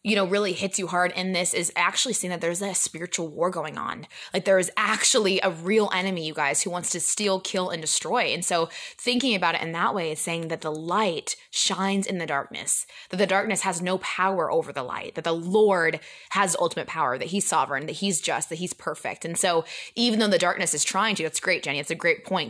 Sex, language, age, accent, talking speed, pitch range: female, English, 20-39, American, 245 wpm, 165-200 Hz